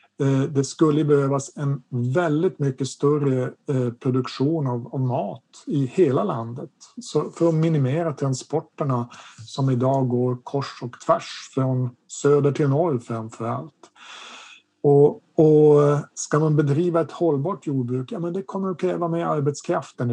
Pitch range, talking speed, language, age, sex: 130-165 Hz, 140 wpm, Swedish, 50-69, male